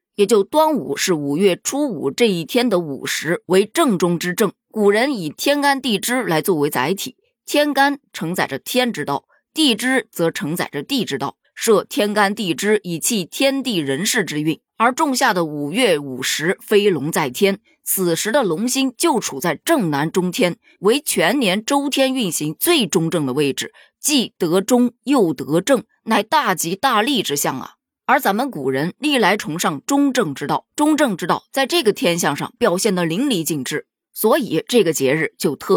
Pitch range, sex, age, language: 160-260 Hz, female, 20-39, Chinese